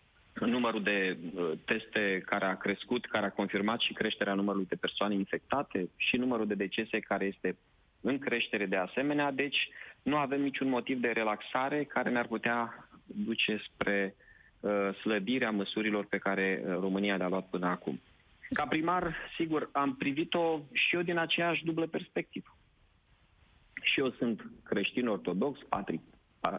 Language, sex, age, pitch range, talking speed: Romanian, male, 30-49, 100-125 Hz, 140 wpm